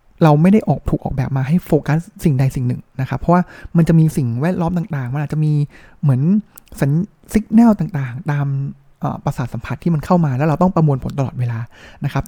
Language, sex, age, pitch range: Thai, male, 20-39, 135-170 Hz